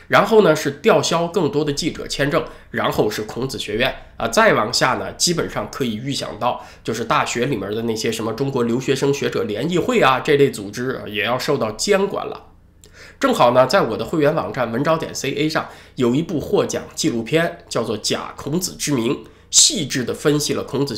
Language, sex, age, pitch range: Chinese, male, 20-39, 115-155 Hz